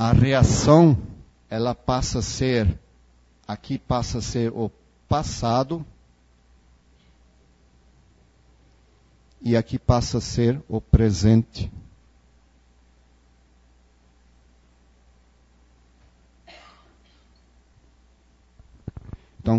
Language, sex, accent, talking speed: Portuguese, male, Brazilian, 60 wpm